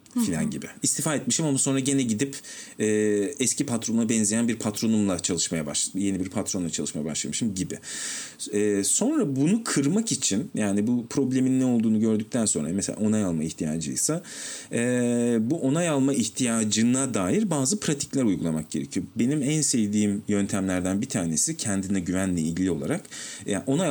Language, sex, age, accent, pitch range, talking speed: Turkish, male, 40-59, native, 105-155 Hz, 150 wpm